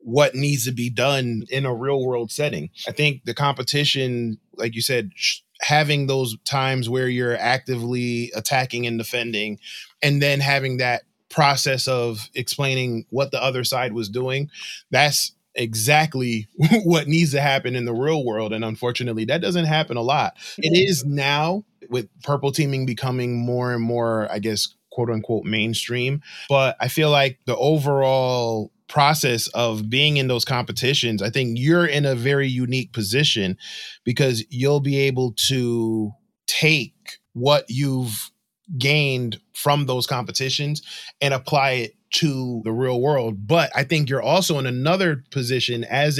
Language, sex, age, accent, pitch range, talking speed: English, male, 20-39, American, 120-145 Hz, 155 wpm